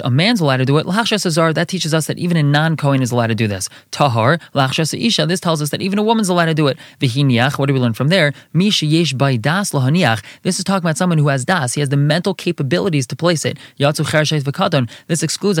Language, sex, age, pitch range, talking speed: English, male, 20-39, 135-175 Hz, 255 wpm